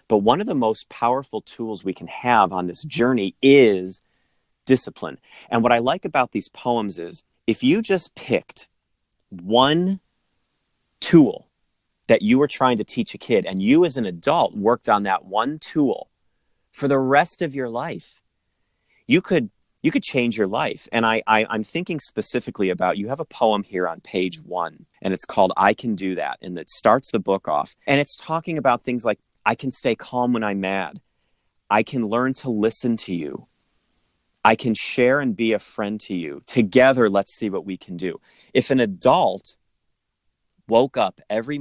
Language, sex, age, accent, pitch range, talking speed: English, male, 30-49, American, 95-135 Hz, 185 wpm